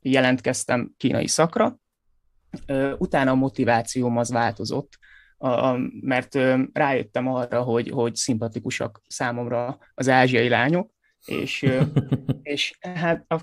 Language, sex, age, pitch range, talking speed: Hungarian, male, 20-39, 115-135 Hz, 100 wpm